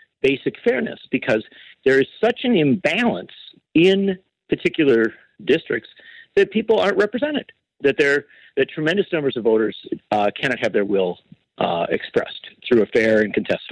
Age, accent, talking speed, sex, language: 50-69, American, 150 wpm, male, English